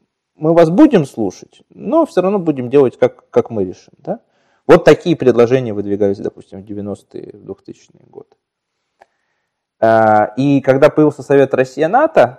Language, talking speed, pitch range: Russian, 135 wpm, 110-155 Hz